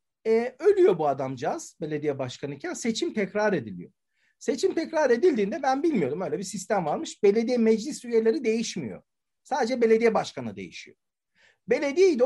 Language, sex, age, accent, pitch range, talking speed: Turkish, male, 50-69, native, 160-255 Hz, 130 wpm